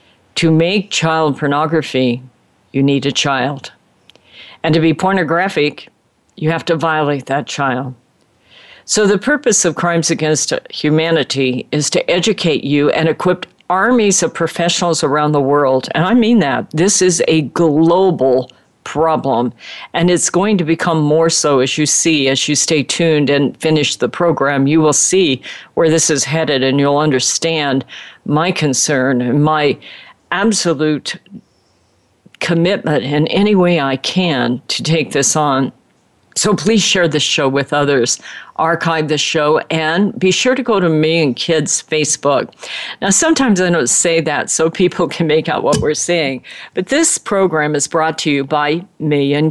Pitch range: 140-175 Hz